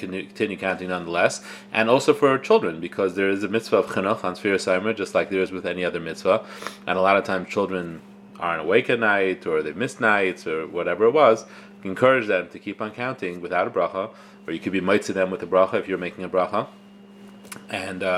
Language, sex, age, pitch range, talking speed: English, male, 30-49, 95-115 Hz, 220 wpm